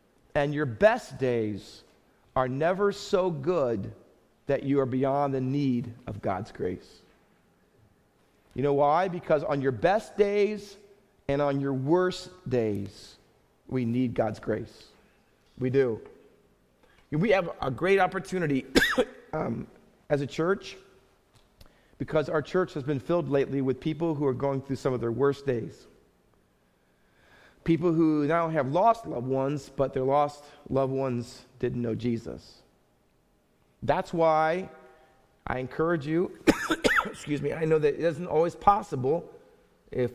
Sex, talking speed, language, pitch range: male, 140 wpm, English, 130-165 Hz